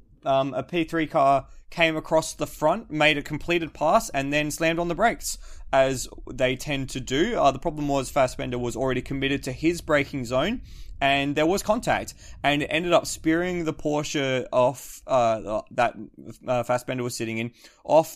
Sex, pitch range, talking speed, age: male, 120-150 Hz, 180 wpm, 20-39